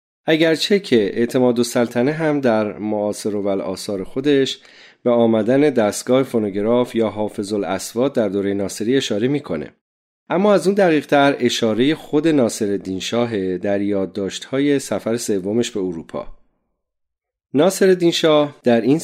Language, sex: Persian, male